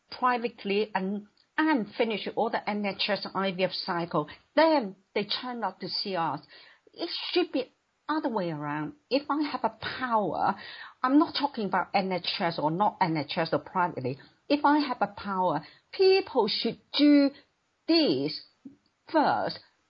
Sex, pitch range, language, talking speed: female, 190-270 Hz, English, 145 wpm